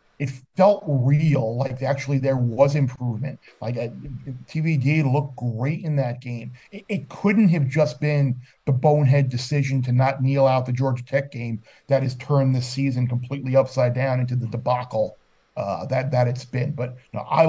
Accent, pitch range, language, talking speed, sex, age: American, 125-145 Hz, English, 175 wpm, male, 40-59